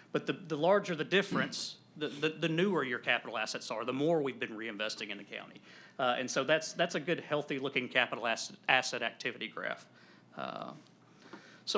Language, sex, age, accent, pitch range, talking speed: English, male, 40-59, American, 130-165 Hz, 190 wpm